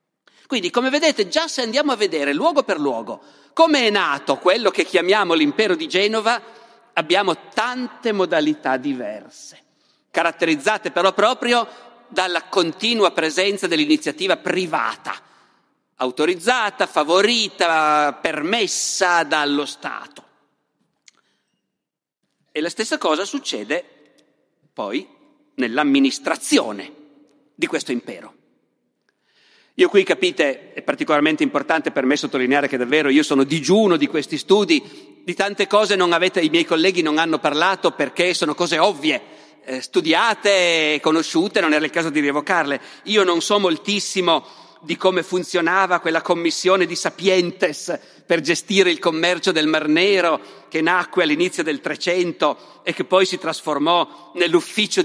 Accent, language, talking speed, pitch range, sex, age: native, Italian, 130 wpm, 160-245 Hz, male, 50-69